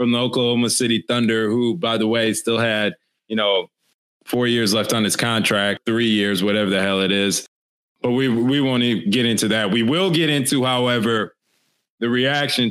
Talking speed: 195 wpm